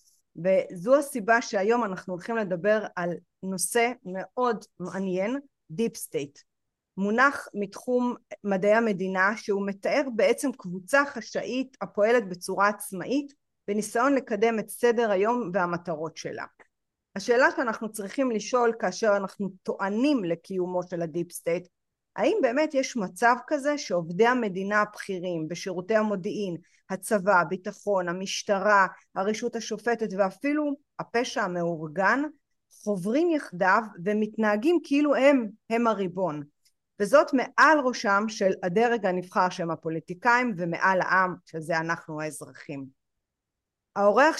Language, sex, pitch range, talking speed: Hebrew, female, 185-240 Hz, 110 wpm